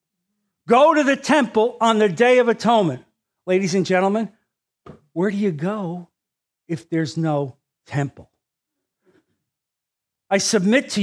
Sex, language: male, English